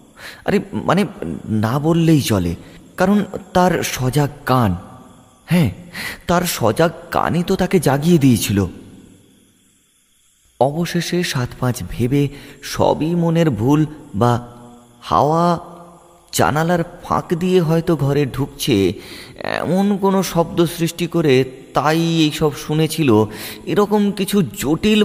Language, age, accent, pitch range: Bengali, 30-49, native, 95-155 Hz